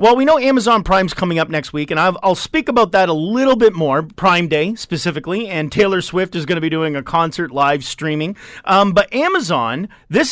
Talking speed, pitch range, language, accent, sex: 215 wpm, 165-245 Hz, English, American, male